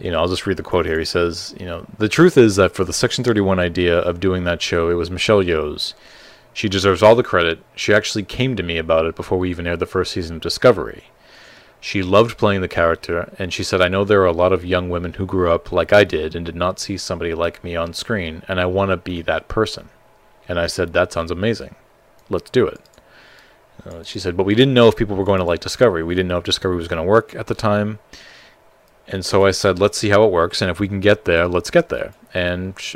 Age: 30-49